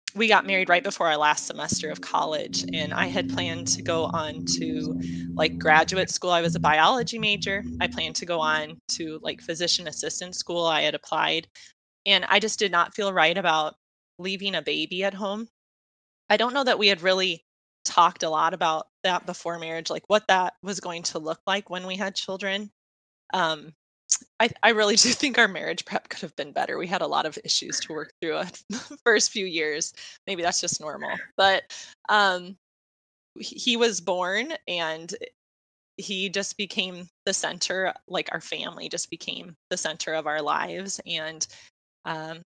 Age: 20-39